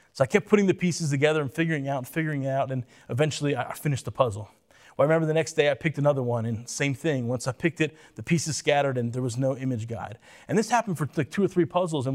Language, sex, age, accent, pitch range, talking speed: English, male, 30-49, American, 130-170 Hz, 270 wpm